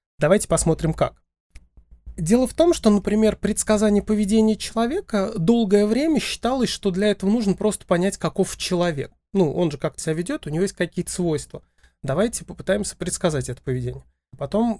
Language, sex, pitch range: Russian, male, 155-190 Hz